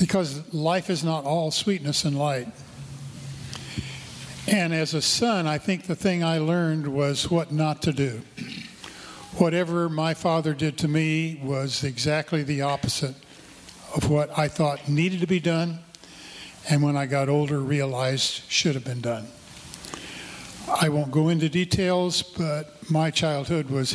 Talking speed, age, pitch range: 150 wpm, 50-69, 140-170 Hz